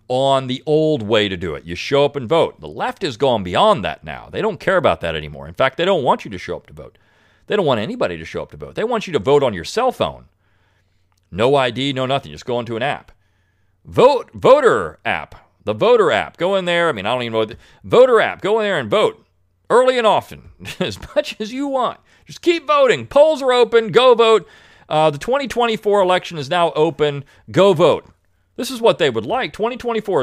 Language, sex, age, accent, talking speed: English, male, 40-59, American, 235 wpm